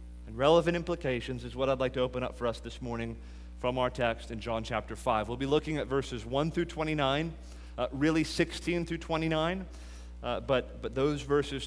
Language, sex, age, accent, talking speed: English, male, 30-49, American, 200 wpm